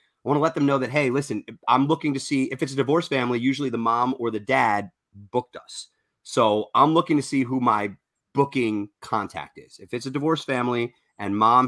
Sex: male